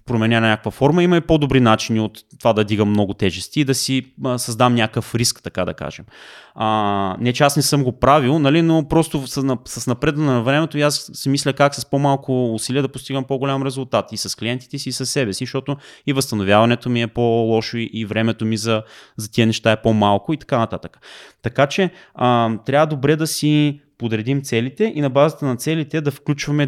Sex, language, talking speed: male, Bulgarian, 205 wpm